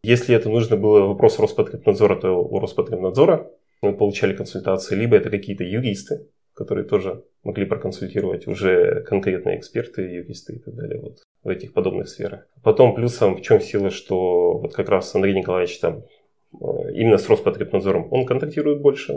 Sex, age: male, 30-49